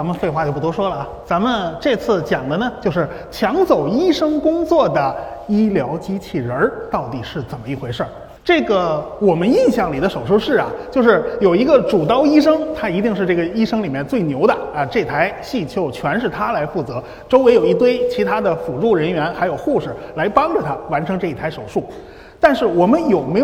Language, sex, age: Chinese, male, 30-49